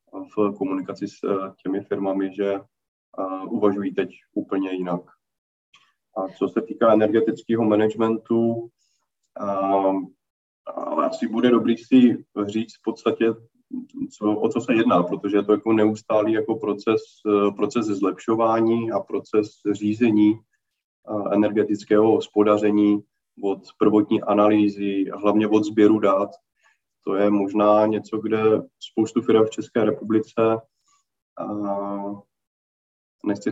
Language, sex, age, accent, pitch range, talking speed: Czech, male, 20-39, native, 100-110 Hz, 110 wpm